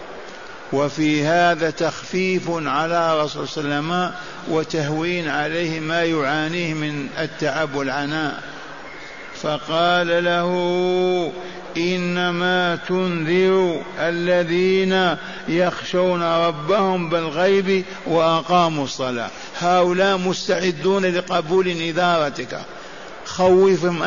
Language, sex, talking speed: Arabic, male, 70 wpm